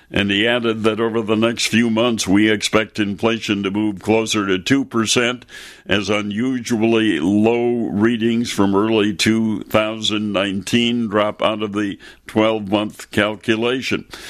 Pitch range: 105-115 Hz